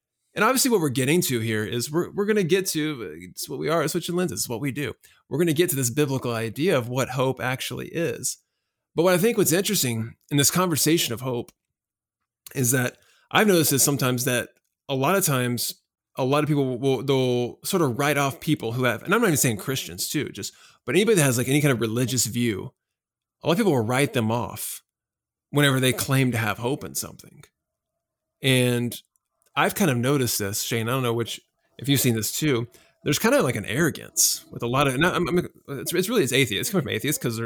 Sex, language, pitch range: male, English, 115-145 Hz